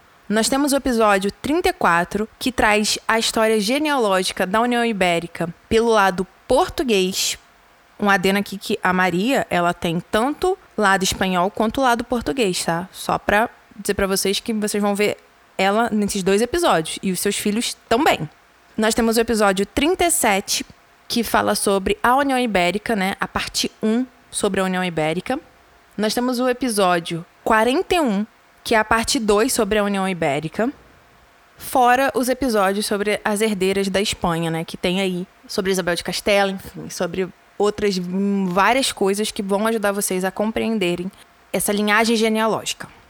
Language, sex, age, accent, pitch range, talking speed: Portuguese, female, 20-39, Brazilian, 195-240 Hz, 155 wpm